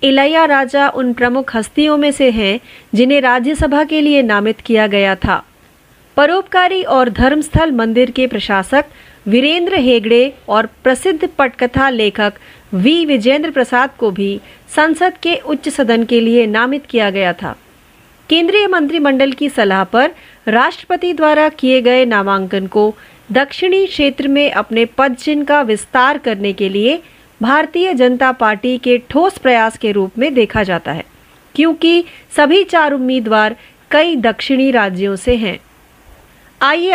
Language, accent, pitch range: Marathi, native, 225-295 Hz